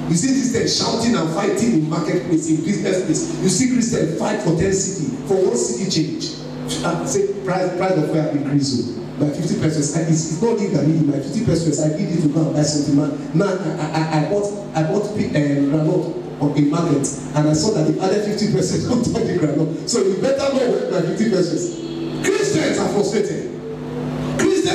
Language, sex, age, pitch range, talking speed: English, male, 40-59, 145-210 Hz, 205 wpm